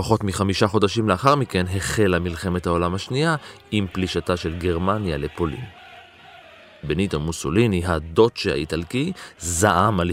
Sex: male